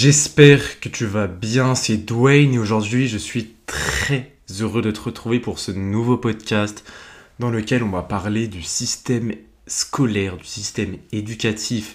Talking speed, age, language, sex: 155 wpm, 20-39, French, male